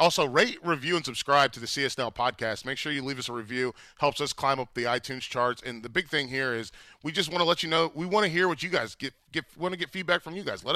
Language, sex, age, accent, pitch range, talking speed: English, male, 30-49, American, 125-170 Hz, 295 wpm